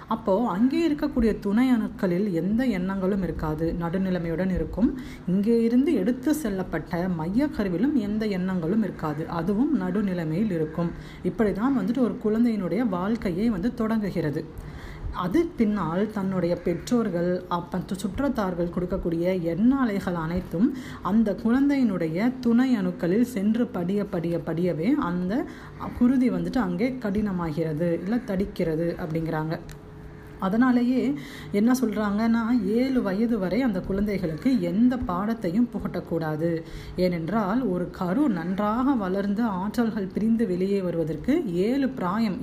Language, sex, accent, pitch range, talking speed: Tamil, female, native, 175-235 Hz, 105 wpm